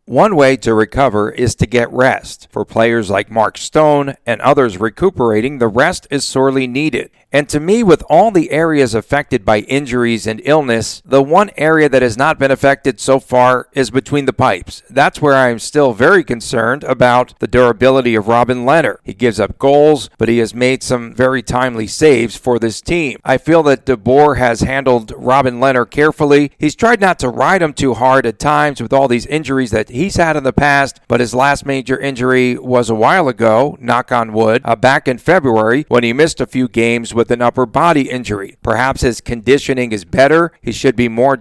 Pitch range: 115-140 Hz